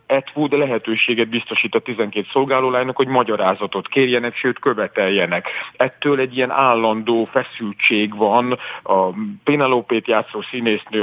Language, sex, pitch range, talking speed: Hungarian, male, 110-135 Hz, 115 wpm